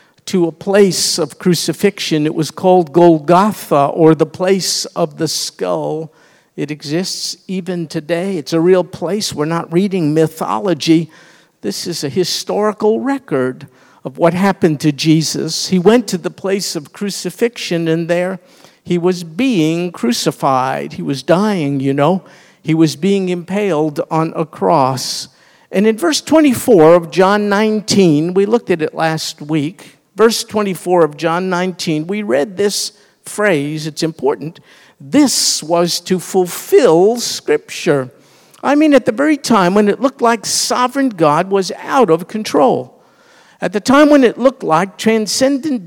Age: 50-69